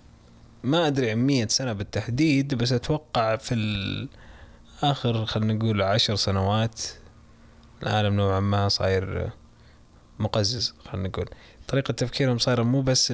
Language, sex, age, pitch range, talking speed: Arabic, male, 20-39, 100-120 Hz, 115 wpm